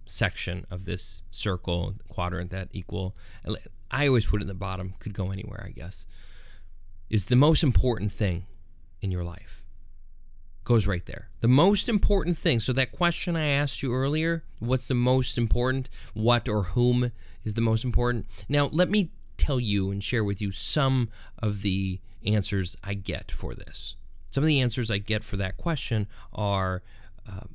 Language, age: English, 20-39